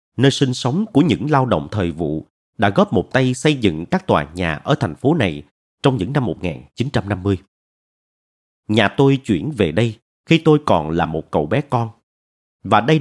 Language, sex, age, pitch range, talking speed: Vietnamese, male, 30-49, 85-130 Hz, 190 wpm